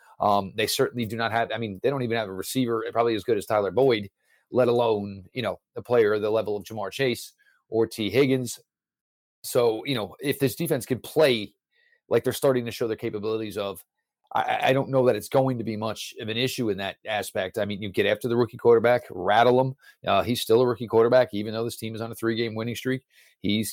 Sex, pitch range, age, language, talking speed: male, 110-125 Hz, 40-59, English, 240 wpm